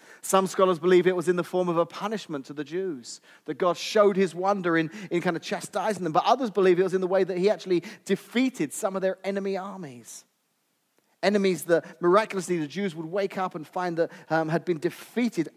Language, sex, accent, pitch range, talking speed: English, male, British, 155-195 Hz, 220 wpm